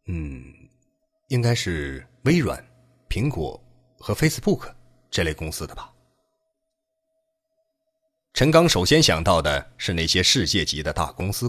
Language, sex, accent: Chinese, male, native